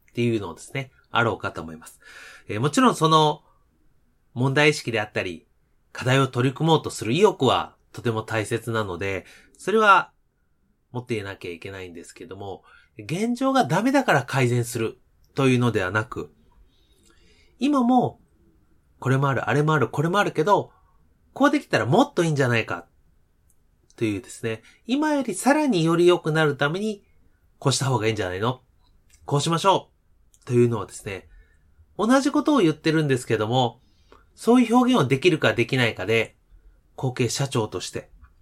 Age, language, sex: 30-49, Japanese, male